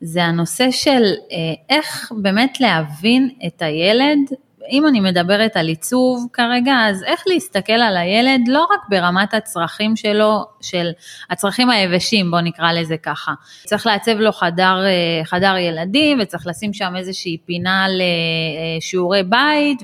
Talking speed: 135 wpm